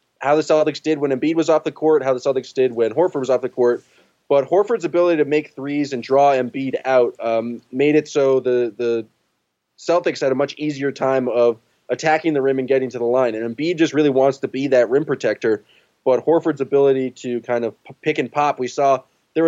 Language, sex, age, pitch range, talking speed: English, male, 20-39, 125-150 Hz, 225 wpm